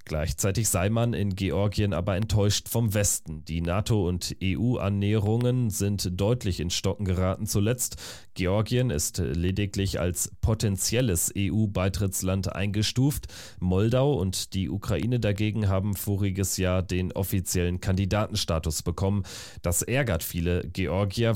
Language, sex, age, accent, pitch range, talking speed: German, male, 30-49, German, 90-110 Hz, 120 wpm